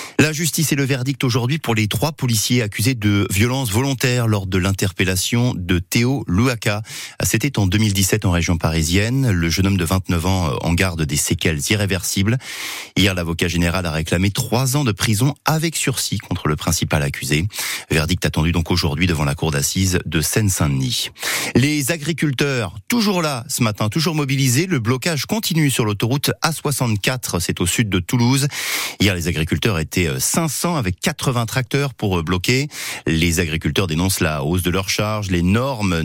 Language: French